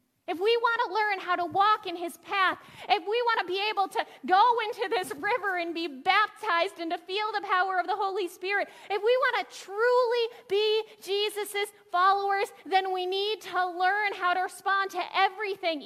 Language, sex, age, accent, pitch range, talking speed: English, female, 30-49, American, 290-390 Hz, 195 wpm